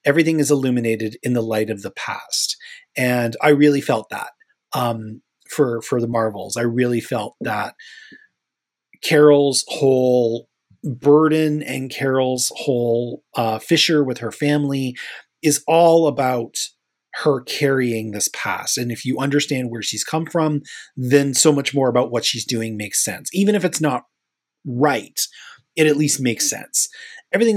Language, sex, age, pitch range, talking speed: English, male, 30-49, 120-155 Hz, 150 wpm